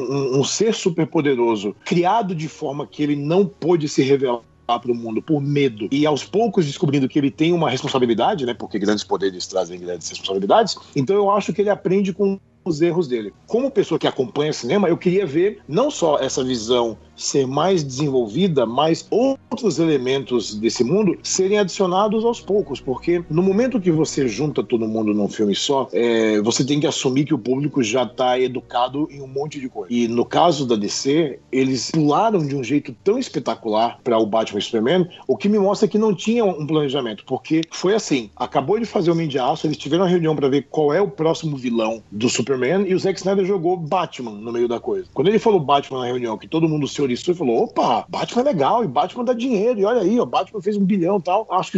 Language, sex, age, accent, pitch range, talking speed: Portuguese, male, 40-59, Brazilian, 130-185 Hz, 215 wpm